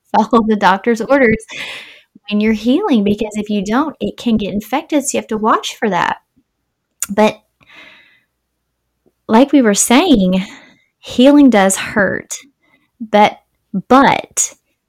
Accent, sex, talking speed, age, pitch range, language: American, female, 130 wpm, 20-39, 180-245 Hz, English